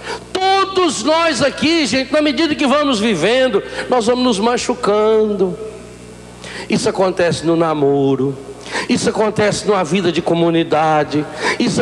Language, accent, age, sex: Portuguese, Brazilian, 60-79, male